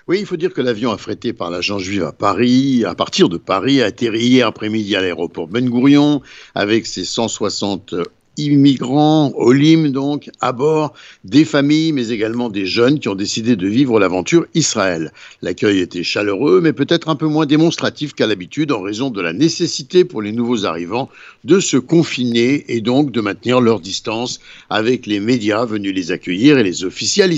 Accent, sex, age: French, male, 60-79